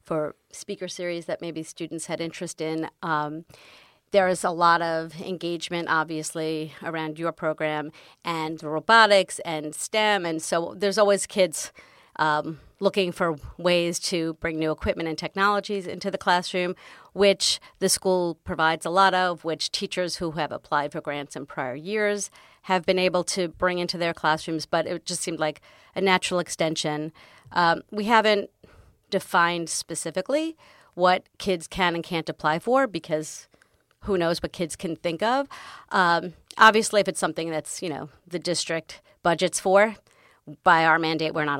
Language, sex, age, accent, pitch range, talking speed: English, female, 40-59, American, 160-190 Hz, 160 wpm